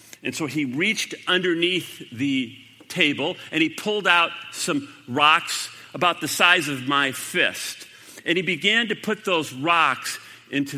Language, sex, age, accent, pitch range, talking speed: English, male, 50-69, American, 125-175 Hz, 150 wpm